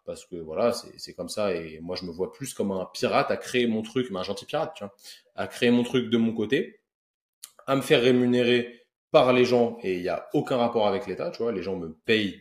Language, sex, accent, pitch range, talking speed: French, male, French, 100-130 Hz, 260 wpm